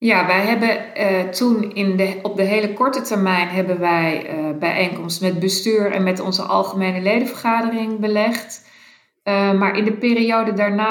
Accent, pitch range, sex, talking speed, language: Dutch, 190-220 Hz, female, 165 wpm, Dutch